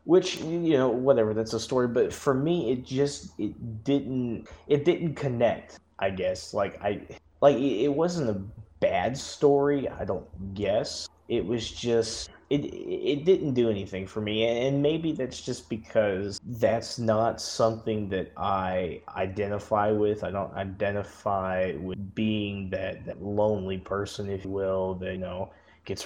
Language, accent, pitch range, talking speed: English, American, 95-120 Hz, 155 wpm